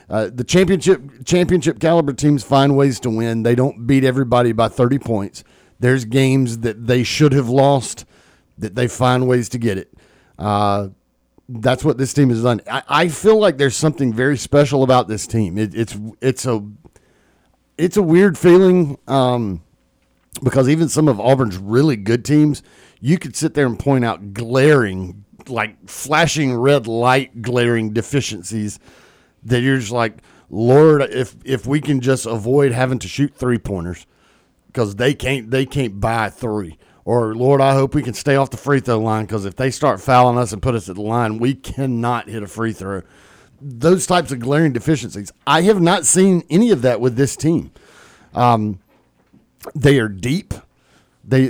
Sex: male